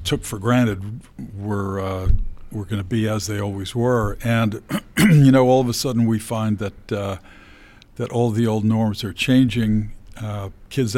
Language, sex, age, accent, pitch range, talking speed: English, male, 50-69, American, 105-125 Hz, 180 wpm